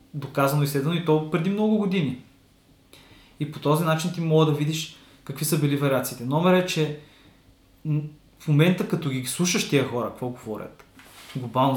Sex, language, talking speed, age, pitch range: male, Bulgarian, 170 wpm, 20-39, 120-150 Hz